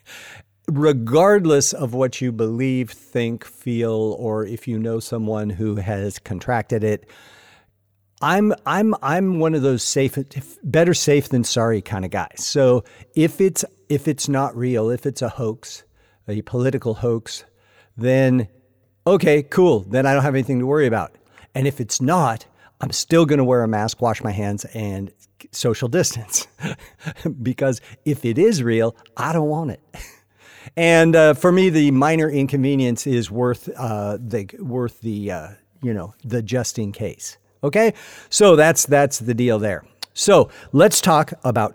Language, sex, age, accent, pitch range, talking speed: English, male, 50-69, American, 110-140 Hz, 160 wpm